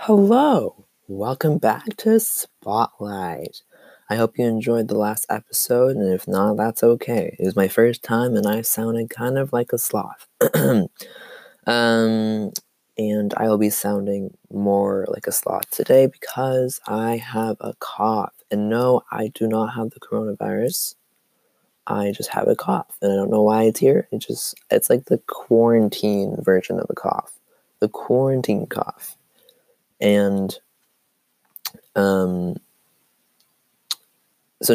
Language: English